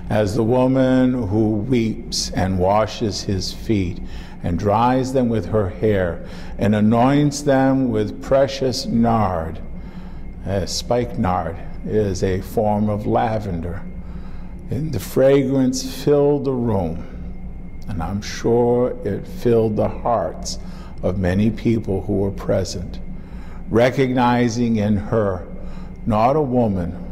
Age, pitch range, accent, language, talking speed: 50-69, 95-130 Hz, American, English, 115 wpm